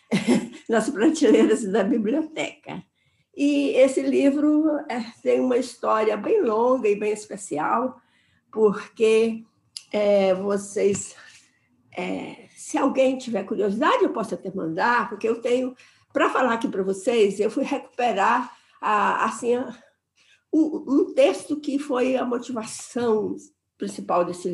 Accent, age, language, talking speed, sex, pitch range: Brazilian, 50-69, Portuguese, 120 wpm, female, 200-275 Hz